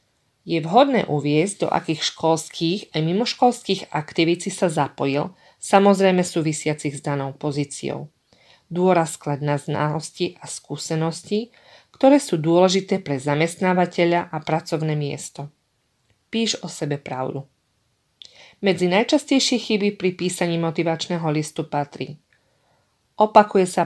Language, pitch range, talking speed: Slovak, 145-180 Hz, 110 wpm